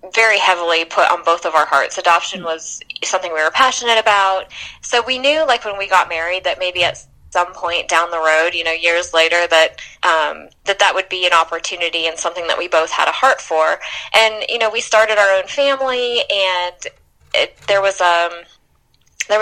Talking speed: 205 wpm